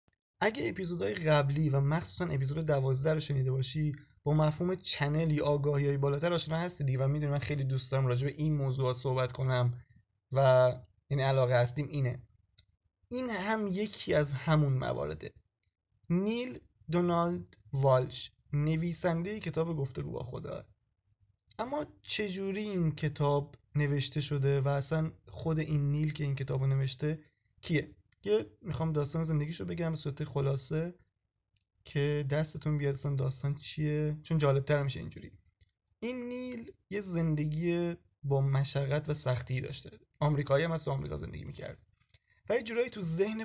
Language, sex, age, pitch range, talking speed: Persian, male, 20-39, 130-160 Hz, 140 wpm